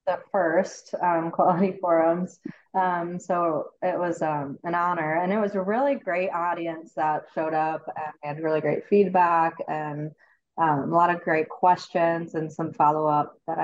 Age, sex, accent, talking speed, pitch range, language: 20-39, female, American, 165 wpm, 155-180 Hz, English